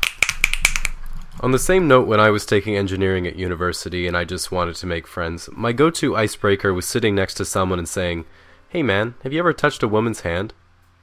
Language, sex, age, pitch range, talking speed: English, male, 20-39, 90-110 Hz, 200 wpm